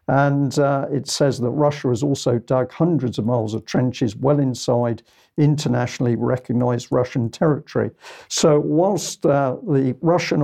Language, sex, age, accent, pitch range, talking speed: English, male, 50-69, British, 125-150 Hz, 145 wpm